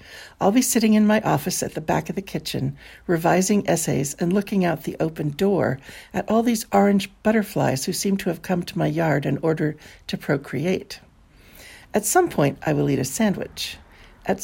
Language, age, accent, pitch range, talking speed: English, 60-79, American, 150-200 Hz, 190 wpm